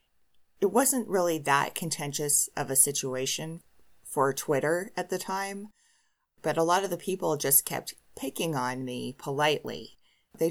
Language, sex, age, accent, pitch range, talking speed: English, female, 30-49, American, 130-170 Hz, 150 wpm